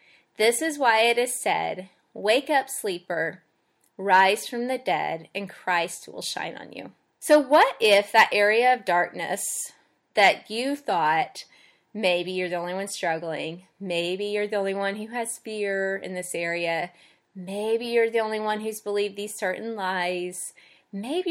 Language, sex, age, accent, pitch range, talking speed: English, female, 20-39, American, 180-225 Hz, 160 wpm